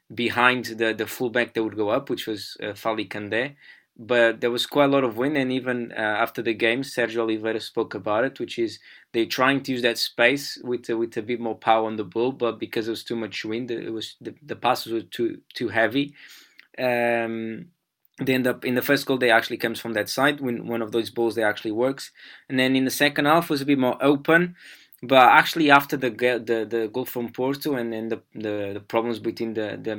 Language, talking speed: English, 235 wpm